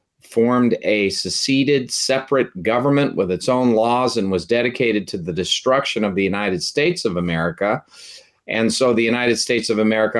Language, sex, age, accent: English, male, 40-59, American